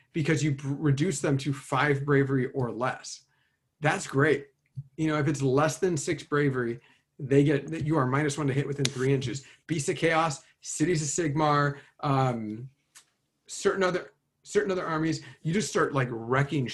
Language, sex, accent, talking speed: English, male, American, 175 wpm